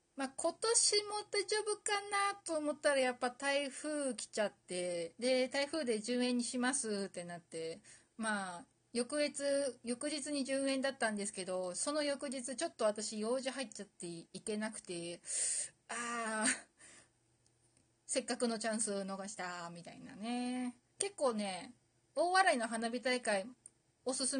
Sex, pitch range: female, 200-295 Hz